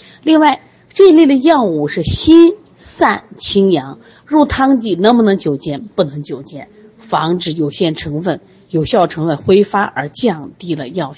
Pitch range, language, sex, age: 155-235 Hz, Chinese, female, 30-49